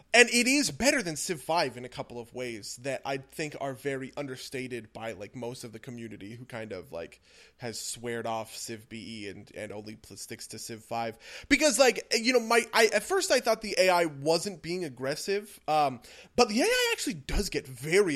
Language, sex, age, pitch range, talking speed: English, male, 20-39, 130-215 Hz, 210 wpm